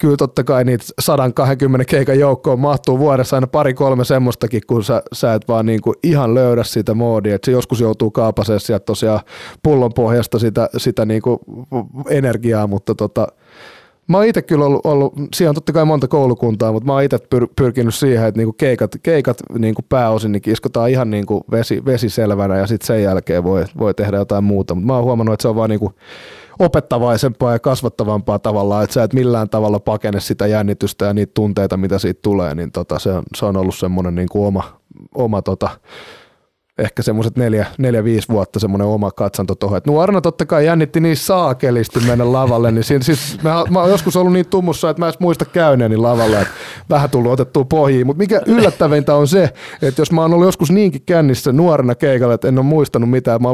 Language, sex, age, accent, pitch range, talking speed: Finnish, male, 20-39, native, 110-145 Hz, 195 wpm